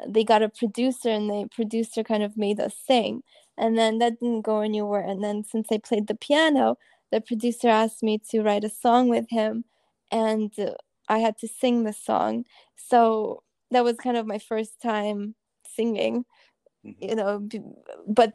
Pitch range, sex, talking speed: 210-235 Hz, female, 175 wpm